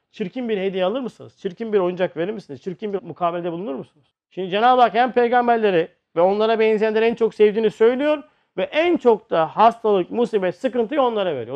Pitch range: 135-210 Hz